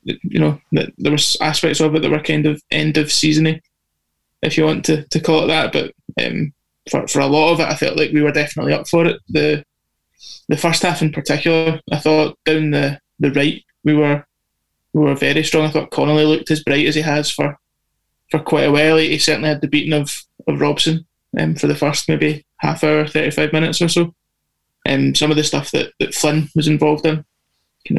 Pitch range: 145-155 Hz